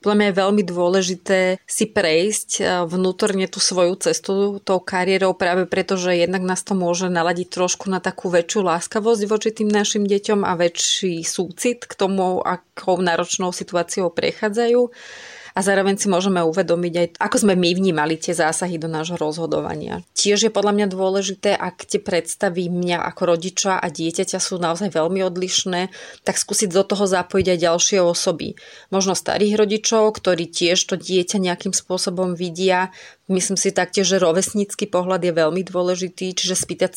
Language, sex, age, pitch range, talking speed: Slovak, female, 30-49, 175-200 Hz, 160 wpm